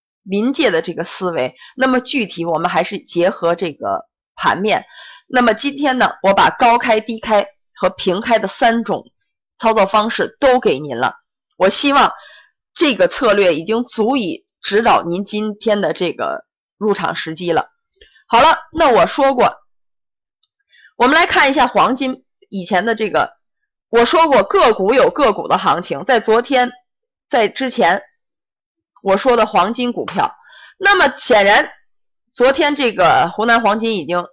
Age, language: 20-39, Chinese